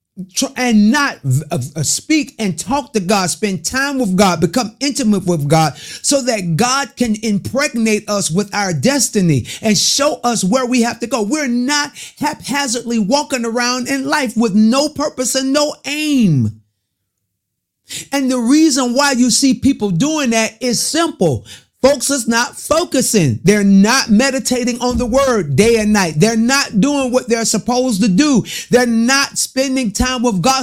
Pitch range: 205-275 Hz